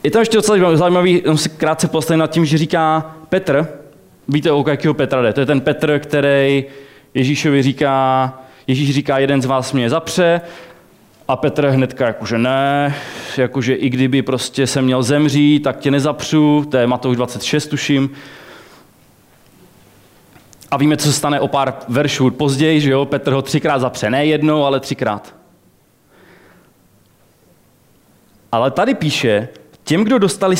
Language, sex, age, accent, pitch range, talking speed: Czech, male, 20-39, native, 135-170 Hz, 150 wpm